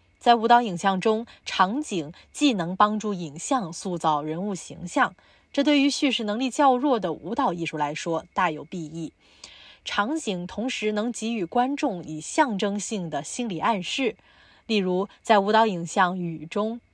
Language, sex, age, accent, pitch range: English, female, 20-39, Chinese, 165-235 Hz